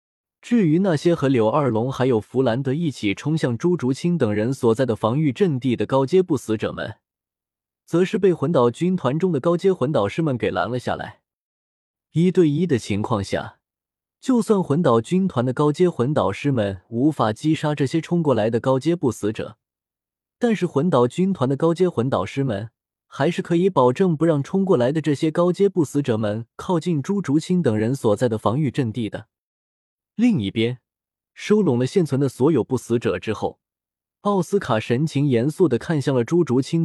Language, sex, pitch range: Chinese, male, 115-170 Hz